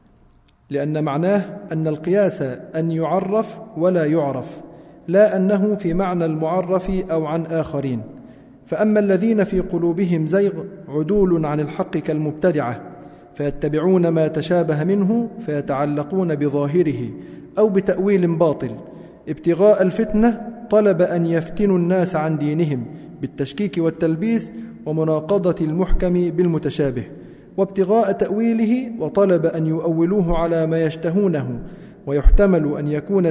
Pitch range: 155-200 Hz